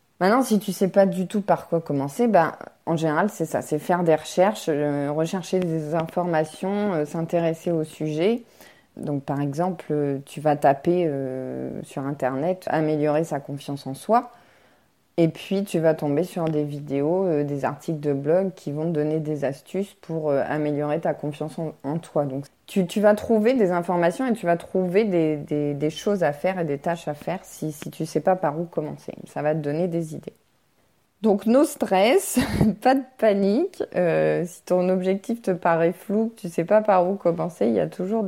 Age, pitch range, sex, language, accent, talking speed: 20-39, 150-195 Hz, female, French, French, 205 wpm